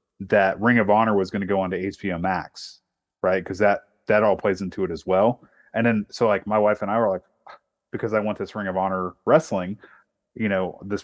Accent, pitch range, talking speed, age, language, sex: American, 90-110 Hz, 230 wpm, 30-49, English, male